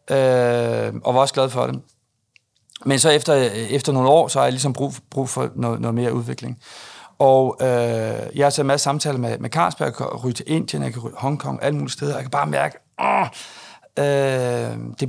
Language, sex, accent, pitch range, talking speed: Danish, male, native, 120-150 Hz, 225 wpm